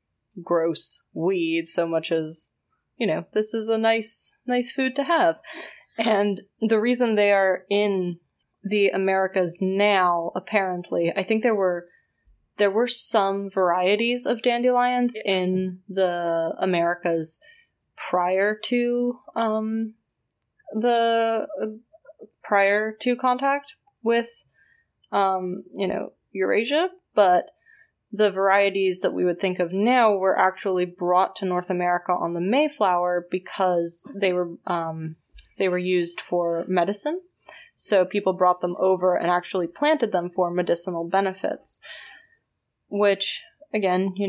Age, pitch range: 20-39, 180-235 Hz